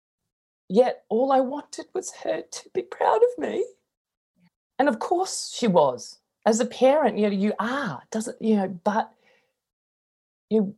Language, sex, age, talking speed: English, female, 20-39, 155 wpm